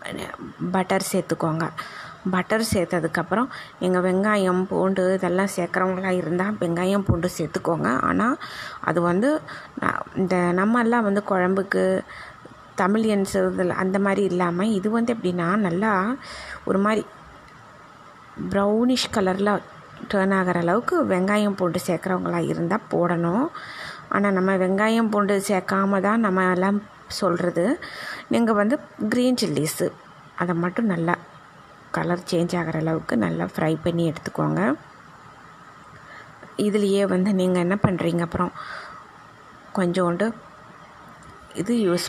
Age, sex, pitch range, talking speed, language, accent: 20-39, female, 175-205 Hz, 105 wpm, Tamil, native